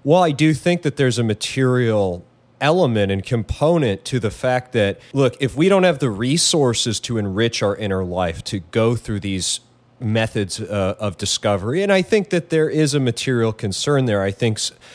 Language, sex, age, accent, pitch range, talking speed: English, male, 30-49, American, 105-130 Hz, 190 wpm